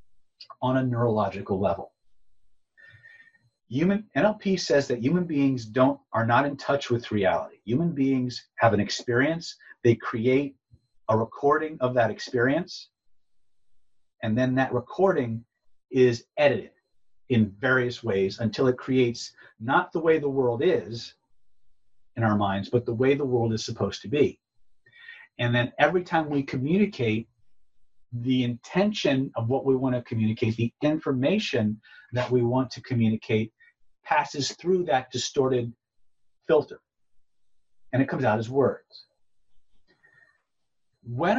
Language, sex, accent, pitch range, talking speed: English, male, American, 115-155 Hz, 135 wpm